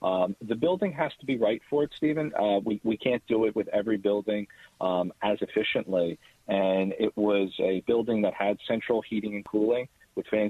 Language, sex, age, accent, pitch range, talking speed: English, male, 40-59, American, 100-110 Hz, 200 wpm